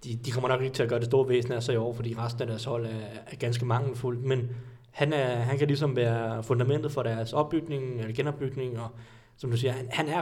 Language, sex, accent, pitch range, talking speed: Danish, male, native, 120-135 Hz, 265 wpm